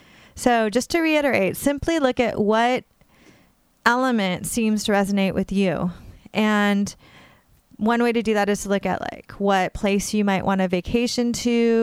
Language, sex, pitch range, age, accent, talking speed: English, female, 190-235 Hz, 30-49, American, 165 wpm